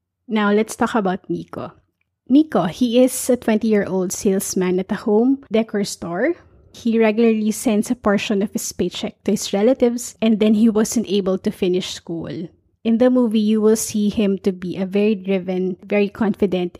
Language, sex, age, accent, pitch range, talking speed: English, female, 20-39, Filipino, 195-225 Hz, 175 wpm